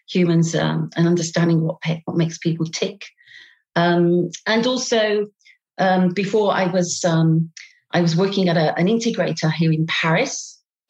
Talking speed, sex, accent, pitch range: 150 wpm, female, British, 170-215 Hz